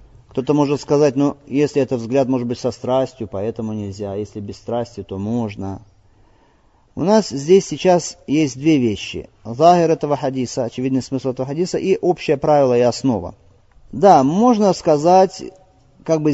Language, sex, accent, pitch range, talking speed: Russian, male, native, 105-150 Hz, 155 wpm